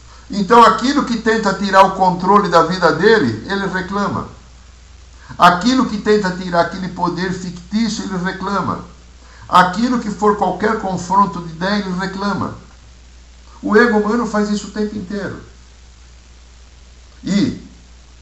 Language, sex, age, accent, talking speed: Portuguese, male, 60-79, Brazilian, 130 wpm